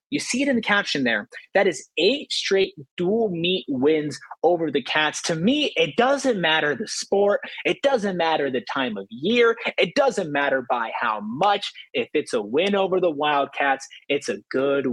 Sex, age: male, 30-49